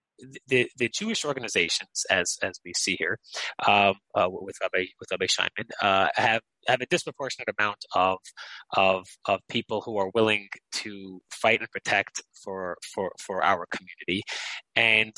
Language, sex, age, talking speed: English, male, 30-49, 150 wpm